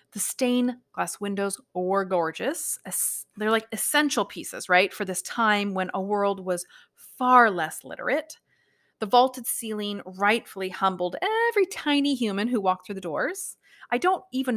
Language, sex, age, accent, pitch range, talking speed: English, female, 30-49, American, 190-255 Hz, 150 wpm